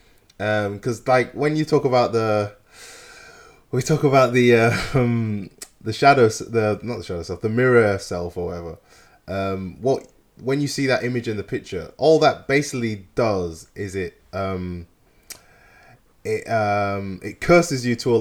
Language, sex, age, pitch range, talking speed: English, male, 20-39, 95-120 Hz, 160 wpm